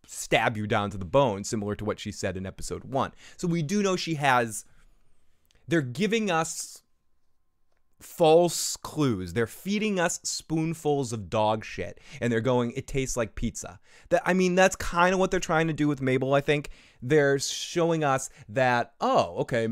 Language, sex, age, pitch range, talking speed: English, male, 20-39, 115-160 Hz, 185 wpm